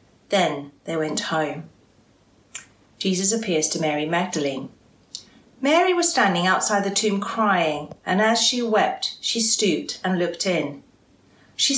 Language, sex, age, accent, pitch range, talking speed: English, female, 40-59, British, 165-260 Hz, 130 wpm